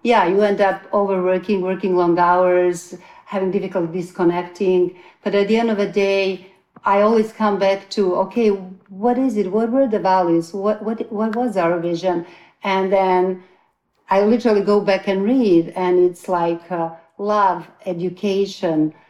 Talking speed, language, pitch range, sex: 155 wpm, English, 180-210 Hz, female